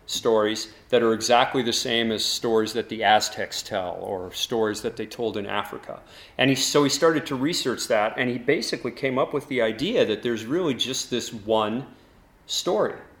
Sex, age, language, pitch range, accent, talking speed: male, 40-59, English, 110-130 Hz, American, 190 wpm